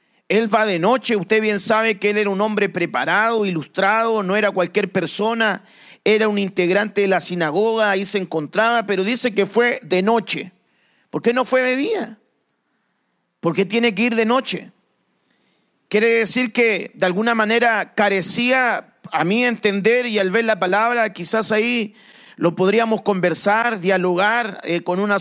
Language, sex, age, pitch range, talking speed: English, male, 40-59, 195-235 Hz, 165 wpm